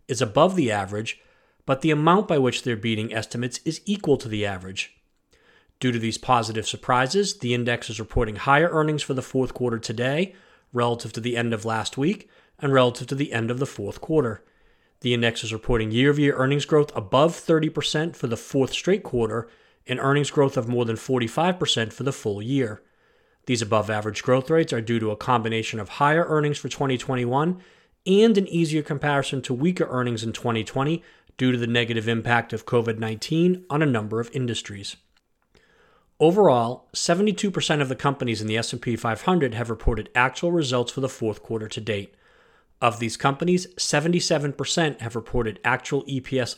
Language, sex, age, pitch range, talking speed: English, male, 40-59, 115-150 Hz, 175 wpm